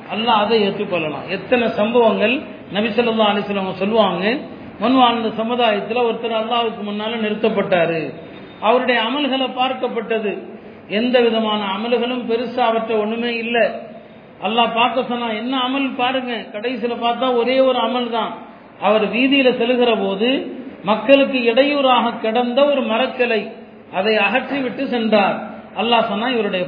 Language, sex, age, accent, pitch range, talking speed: Tamil, male, 40-59, native, 225-265 Hz, 110 wpm